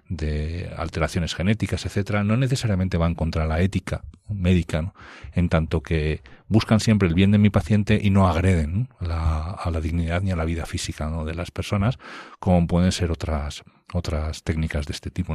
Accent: Spanish